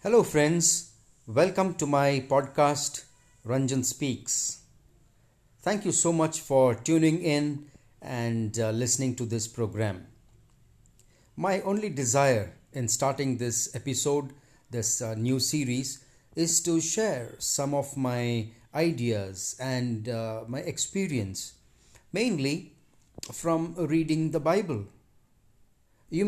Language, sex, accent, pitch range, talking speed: English, male, Indian, 120-150 Hz, 110 wpm